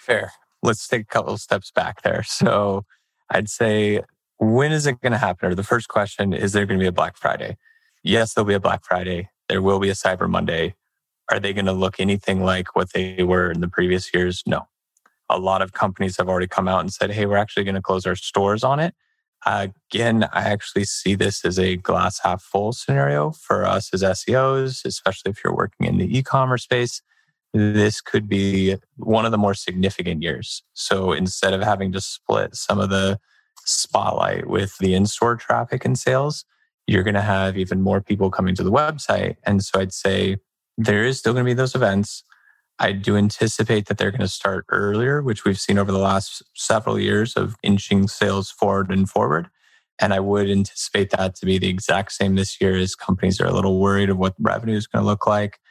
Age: 20-39